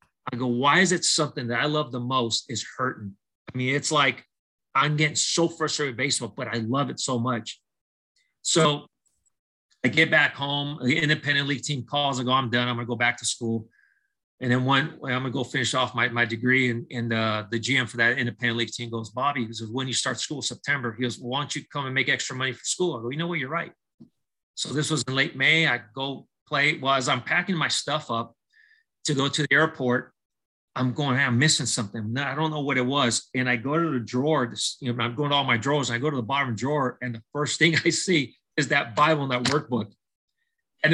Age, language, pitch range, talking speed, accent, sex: 30-49, English, 120-155 Hz, 250 wpm, American, male